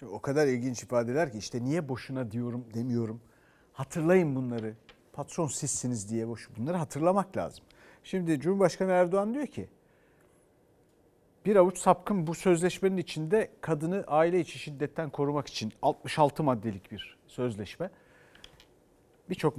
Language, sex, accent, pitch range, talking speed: Turkish, male, native, 135-215 Hz, 130 wpm